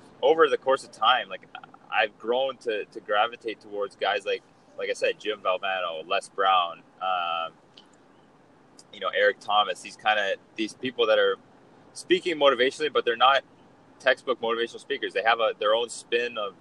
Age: 20-39